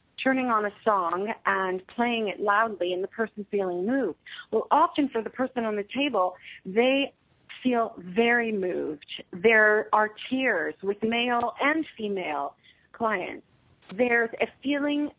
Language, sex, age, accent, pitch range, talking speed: English, female, 40-59, American, 195-245 Hz, 140 wpm